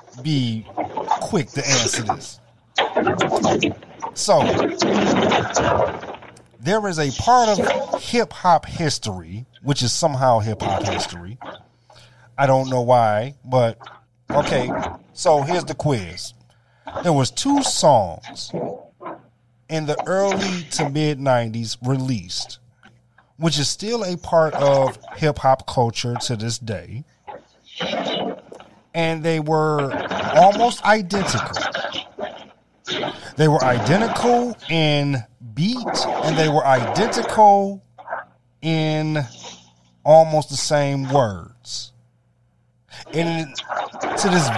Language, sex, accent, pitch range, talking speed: English, male, American, 120-165 Hz, 100 wpm